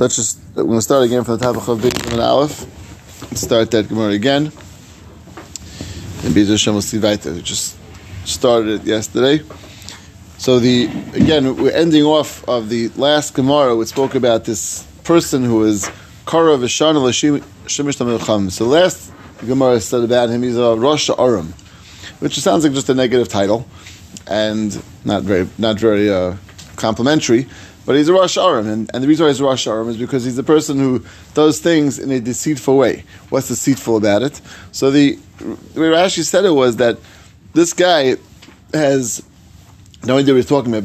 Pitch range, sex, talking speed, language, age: 100-135 Hz, male, 165 wpm, English, 30-49